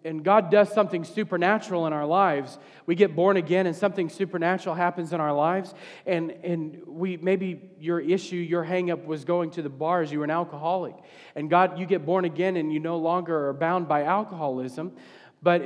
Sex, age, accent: male, 40-59, American